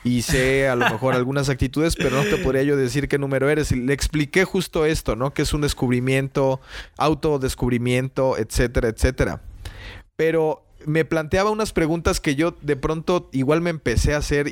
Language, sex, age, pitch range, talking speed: Spanish, male, 30-49, 125-155 Hz, 175 wpm